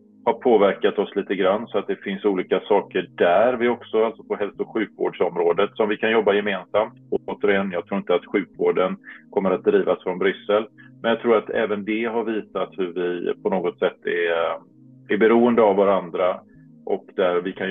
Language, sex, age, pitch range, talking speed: Swedish, male, 30-49, 100-130 Hz, 195 wpm